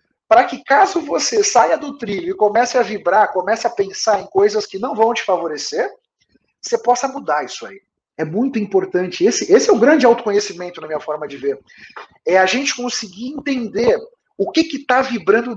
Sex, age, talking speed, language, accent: male, 40-59, 195 wpm, Portuguese, Brazilian